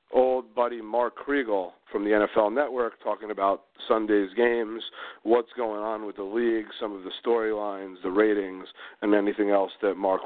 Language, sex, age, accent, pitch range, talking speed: English, male, 40-59, American, 105-125 Hz, 170 wpm